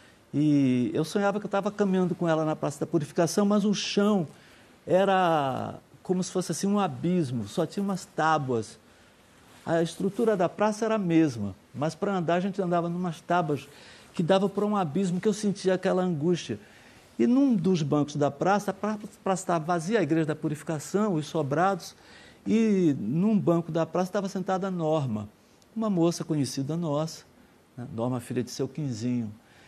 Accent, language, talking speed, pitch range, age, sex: Brazilian, Portuguese, 180 wpm, 155-205 Hz, 60-79, male